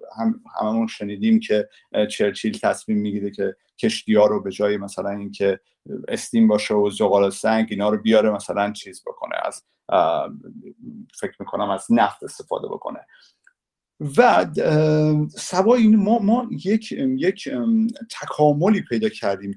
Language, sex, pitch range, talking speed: Persian, male, 110-185 Hz, 130 wpm